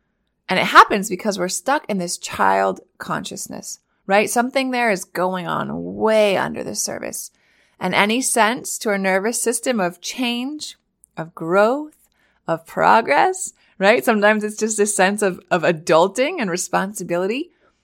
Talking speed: 150 wpm